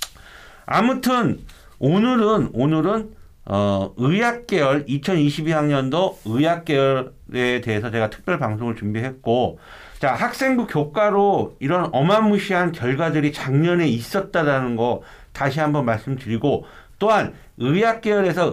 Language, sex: Korean, male